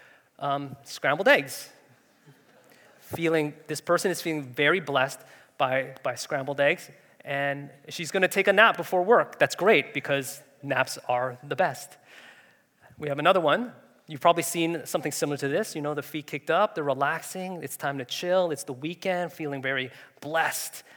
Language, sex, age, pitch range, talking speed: English, male, 20-39, 140-165 Hz, 170 wpm